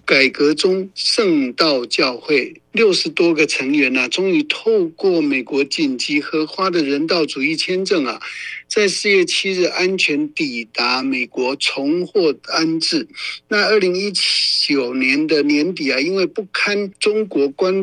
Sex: male